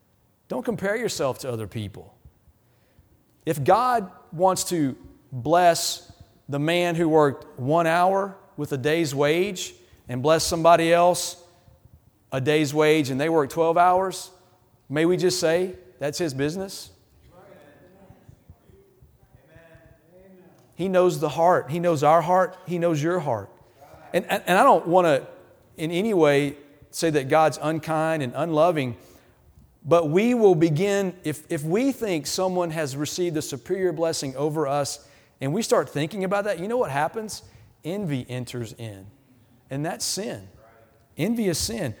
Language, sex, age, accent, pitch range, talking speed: English, male, 40-59, American, 140-185 Hz, 145 wpm